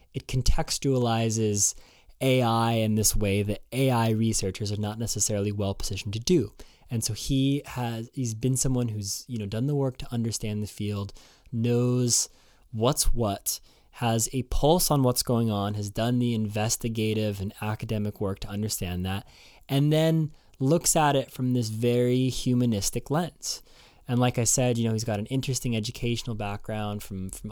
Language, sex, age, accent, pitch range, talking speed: English, male, 20-39, American, 110-135 Hz, 165 wpm